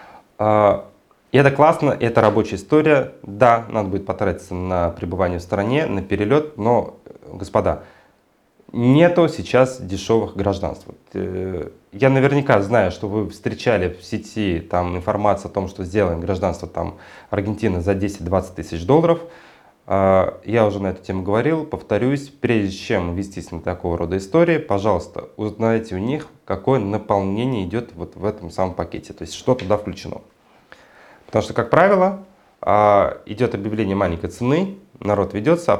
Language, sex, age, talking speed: Russian, male, 20-39, 135 wpm